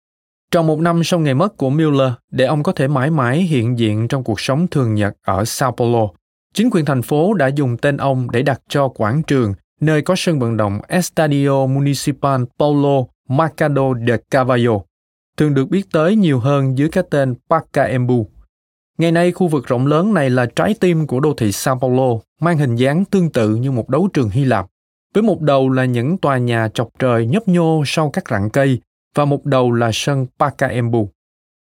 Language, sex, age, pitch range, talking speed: Vietnamese, male, 20-39, 120-160 Hz, 200 wpm